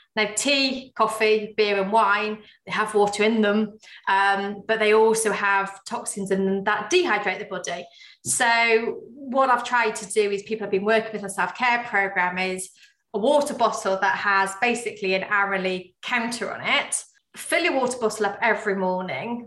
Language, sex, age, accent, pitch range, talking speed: English, female, 30-49, British, 200-240 Hz, 180 wpm